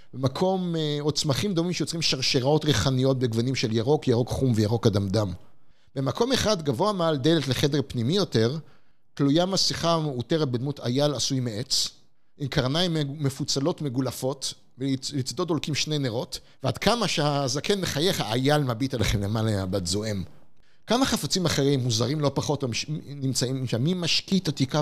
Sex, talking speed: male, 140 wpm